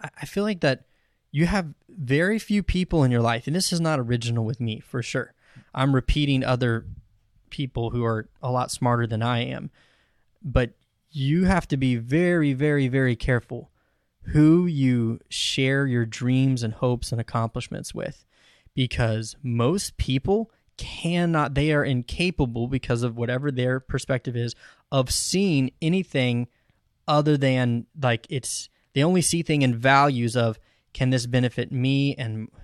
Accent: American